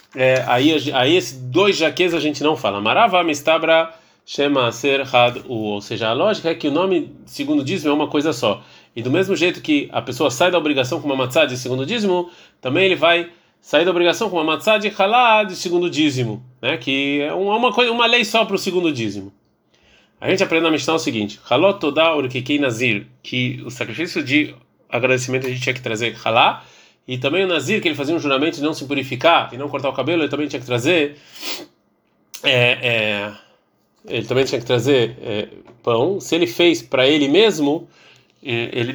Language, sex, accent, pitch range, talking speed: Portuguese, male, Brazilian, 125-175 Hz, 200 wpm